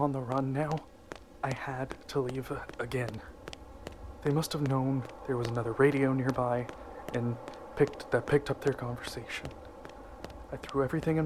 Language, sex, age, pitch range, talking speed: English, male, 20-39, 125-150 Hz, 155 wpm